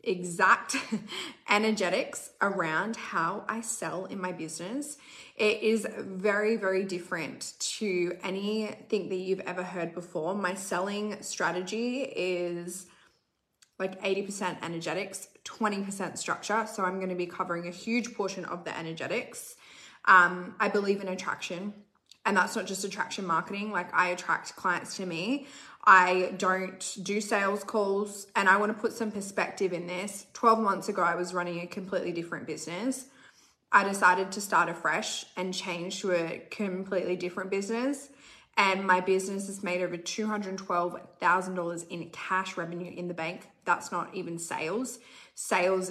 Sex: female